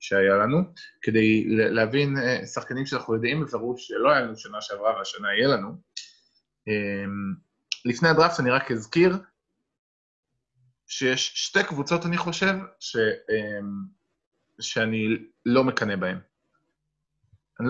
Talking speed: 110 wpm